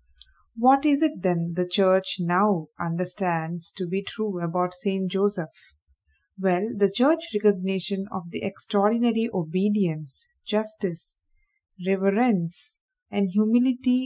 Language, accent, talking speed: English, Indian, 110 wpm